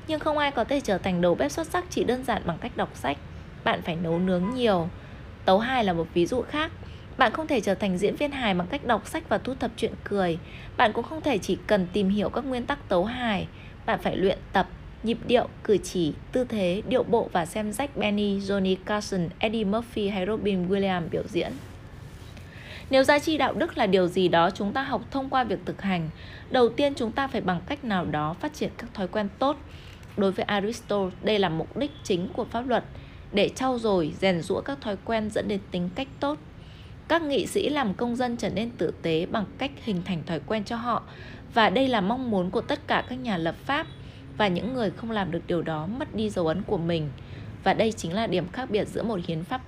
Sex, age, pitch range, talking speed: female, 20-39, 180-250 Hz, 235 wpm